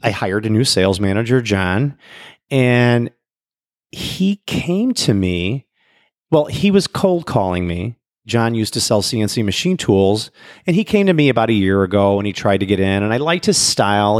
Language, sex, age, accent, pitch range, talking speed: English, male, 40-59, American, 105-140 Hz, 190 wpm